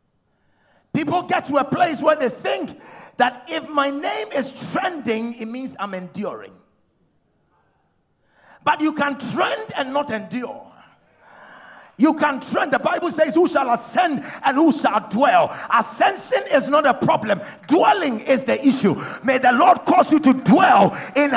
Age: 50-69